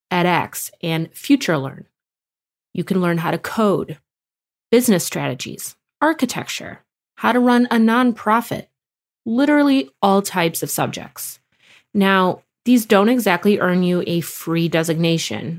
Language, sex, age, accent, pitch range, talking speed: English, female, 30-49, American, 165-225 Hz, 120 wpm